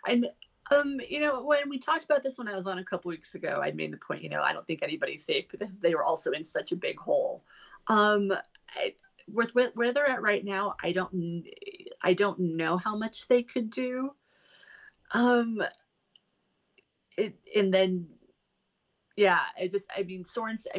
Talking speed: 195 wpm